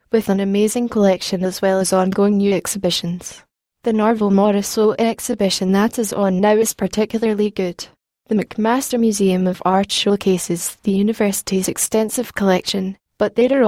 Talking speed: 145 wpm